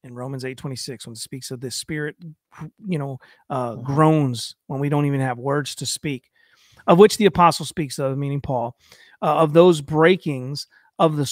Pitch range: 140-170 Hz